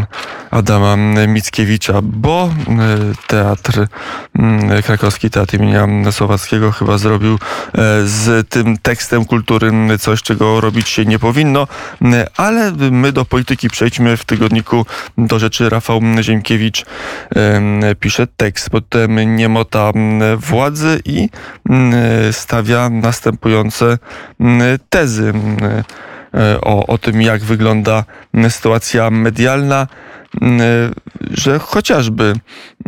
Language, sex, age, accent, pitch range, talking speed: Polish, male, 20-39, native, 110-120 Hz, 90 wpm